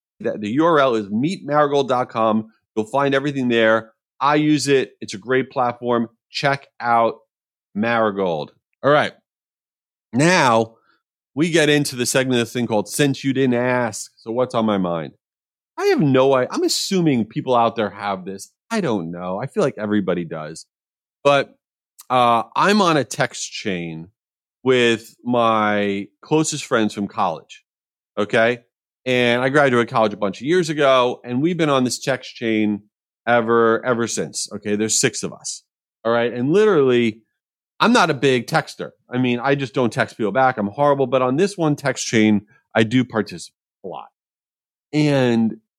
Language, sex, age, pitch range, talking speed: English, male, 30-49, 110-140 Hz, 165 wpm